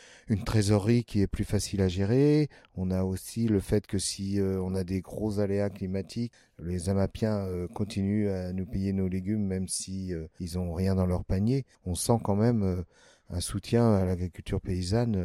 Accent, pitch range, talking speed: French, 90-110 Hz, 195 wpm